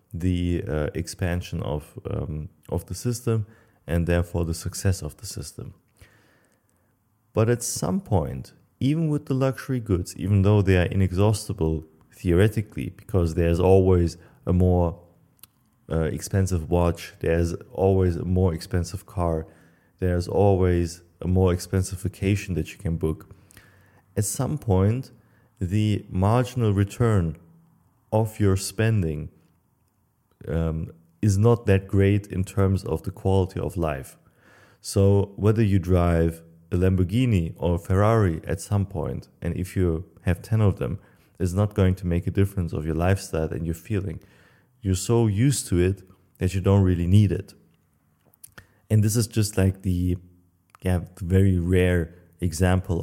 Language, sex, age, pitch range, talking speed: English, male, 30-49, 85-105 Hz, 145 wpm